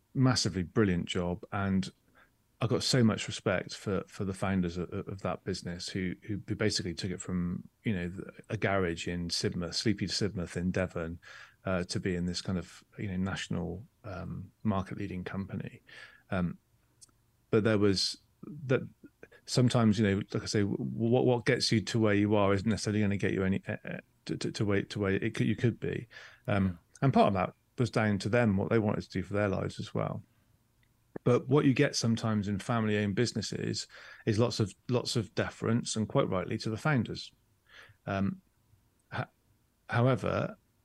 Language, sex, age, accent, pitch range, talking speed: English, male, 30-49, British, 95-115 Hz, 185 wpm